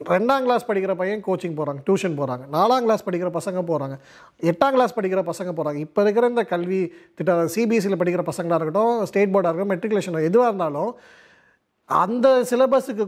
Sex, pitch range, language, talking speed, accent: male, 170-230 Hz, Tamil, 160 wpm, native